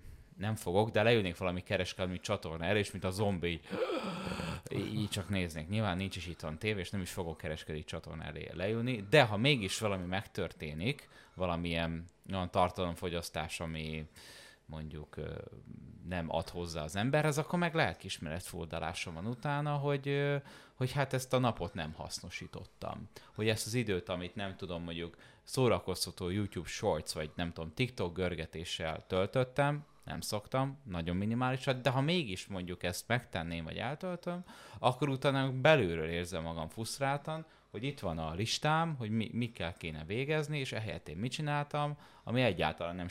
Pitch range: 85-130 Hz